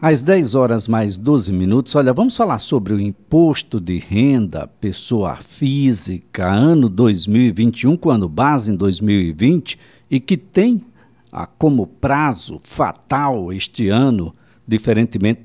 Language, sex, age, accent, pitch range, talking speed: Portuguese, male, 60-79, Brazilian, 110-160 Hz, 125 wpm